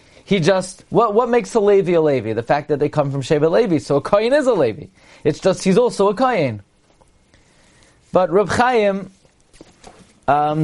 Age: 30-49